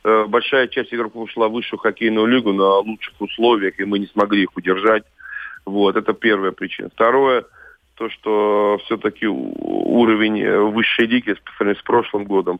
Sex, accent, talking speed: male, native, 150 wpm